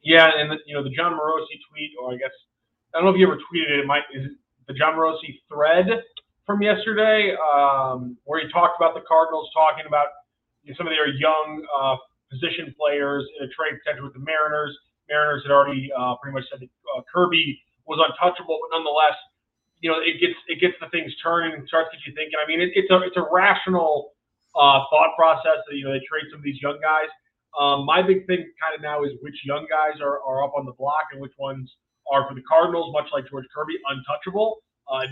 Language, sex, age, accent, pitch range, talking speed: English, male, 20-39, American, 140-160 Hz, 230 wpm